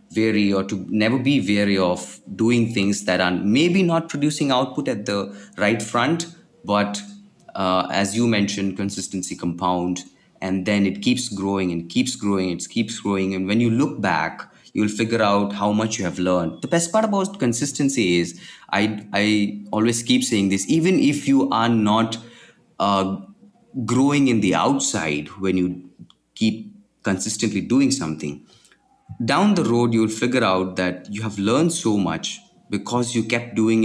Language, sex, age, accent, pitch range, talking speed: English, male, 30-49, Indian, 95-120 Hz, 165 wpm